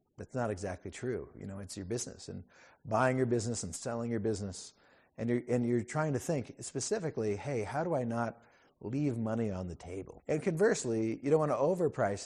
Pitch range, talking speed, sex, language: 100-130 Hz, 200 wpm, male, English